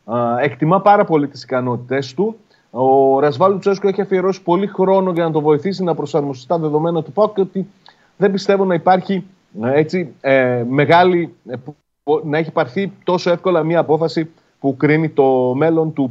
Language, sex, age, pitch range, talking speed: Greek, male, 30-49, 125-175 Hz, 160 wpm